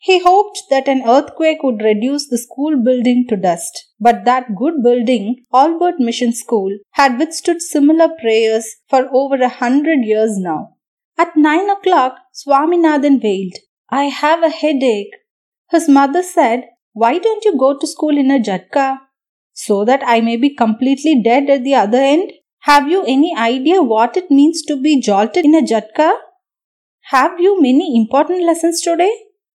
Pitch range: 235-315 Hz